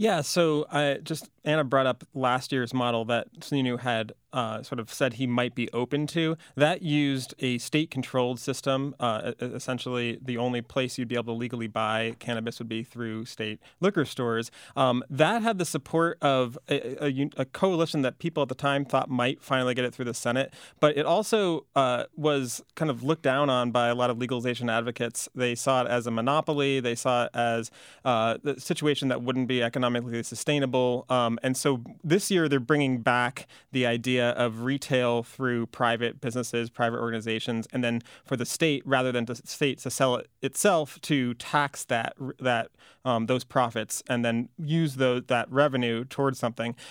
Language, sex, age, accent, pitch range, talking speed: English, male, 30-49, American, 120-145 Hz, 190 wpm